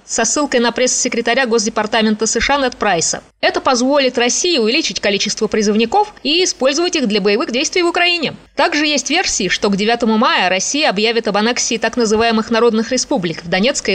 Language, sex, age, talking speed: Russian, female, 20-39, 170 wpm